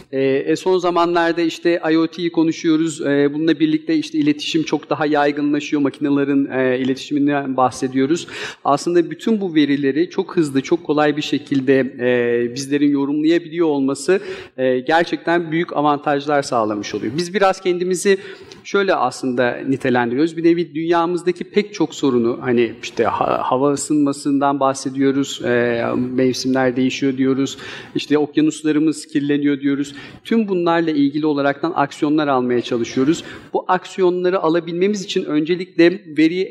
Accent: native